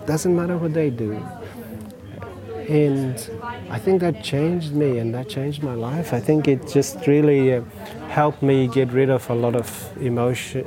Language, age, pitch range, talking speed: English, 40-59, 115-145 Hz, 170 wpm